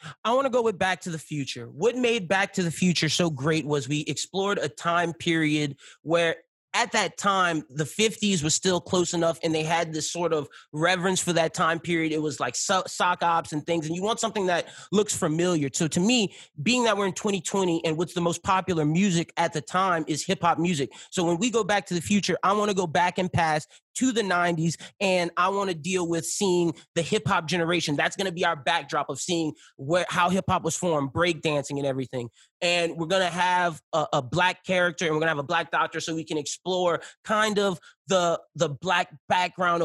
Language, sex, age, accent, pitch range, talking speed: English, male, 30-49, American, 160-185 Hz, 230 wpm